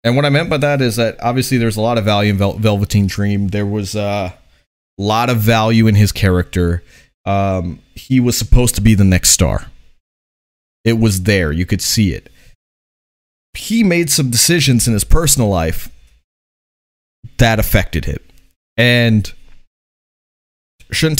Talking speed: 160 wpm